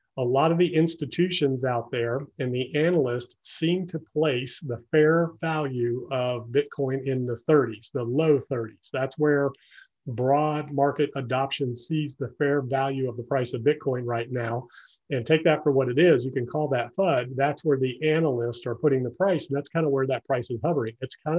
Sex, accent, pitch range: male, American, 125-150 Hz